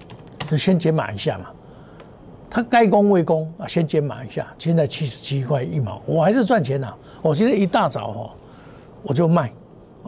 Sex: male